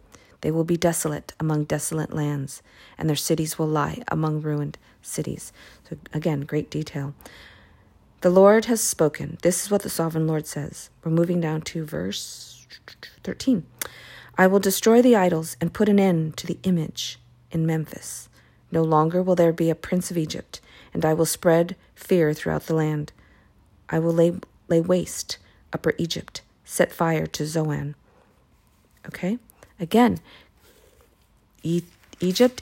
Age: 50-69